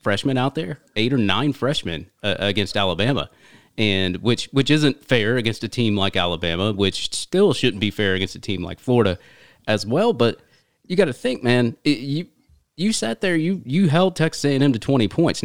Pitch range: 95-125 Hz